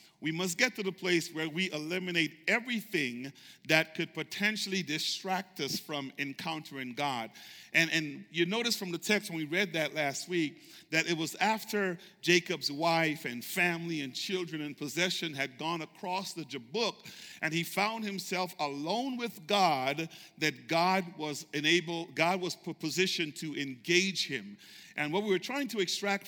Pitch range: 160-205 Hz